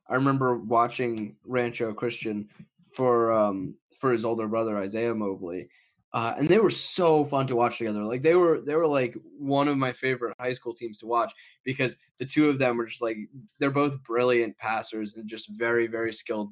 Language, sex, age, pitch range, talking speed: English, male, 10-29, 105-125 Hz, 195 wpm